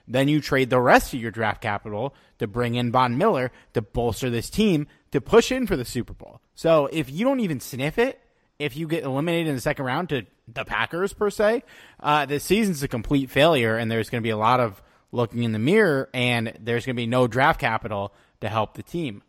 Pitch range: 115-155 Hz